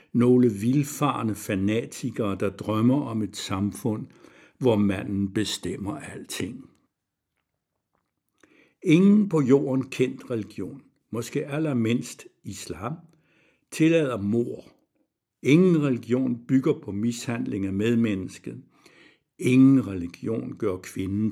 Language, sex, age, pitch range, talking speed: Danish, male, 60-79, 105-135 Hz, 95 wpm